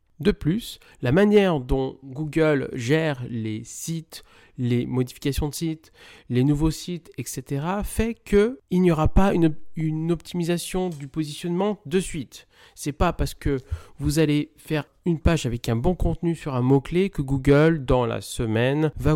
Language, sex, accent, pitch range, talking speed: French, male, French, 125-165 Hz, 165 wpm